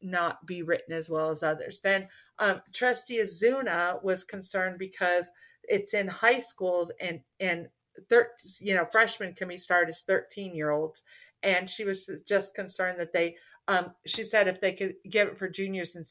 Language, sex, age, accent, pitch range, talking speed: English, female, 50-69, American, 170-200 Hz, 185 wpm